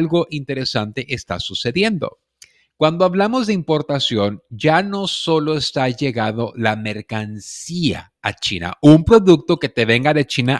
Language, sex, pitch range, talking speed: Spanish, male, 120-155 Hz, 135 wpm